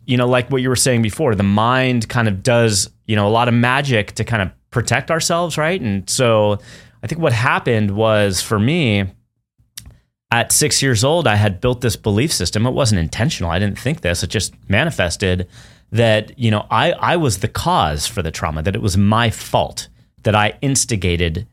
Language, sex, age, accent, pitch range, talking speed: English, male, 30-49, American, 100-120 Hz, 205 wpm